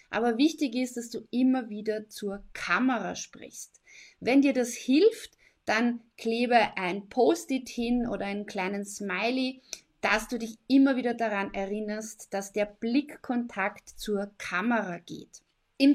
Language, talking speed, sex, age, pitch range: German, 140 wpm, female, 30-49, 210-265 Hz